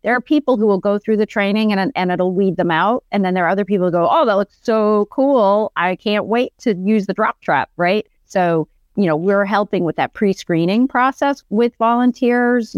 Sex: female